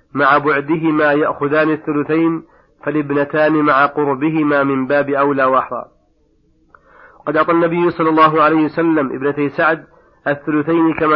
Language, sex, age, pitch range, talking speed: Arabic, male, 40-59, 145-160 Hz, 120 wpm